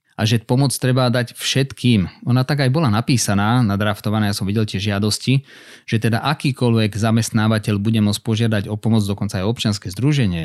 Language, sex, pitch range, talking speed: Slovak, male, 110-130 Hz, 170 wpm